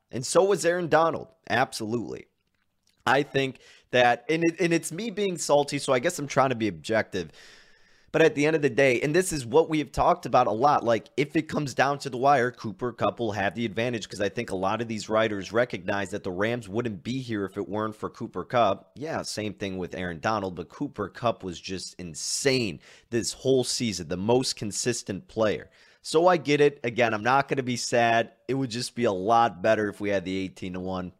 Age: 30-49